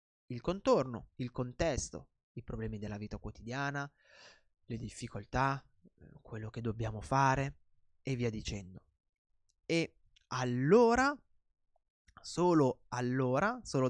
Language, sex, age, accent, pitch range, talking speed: Italian, male, 20-39, native, 115-155 Hz, 100 wpm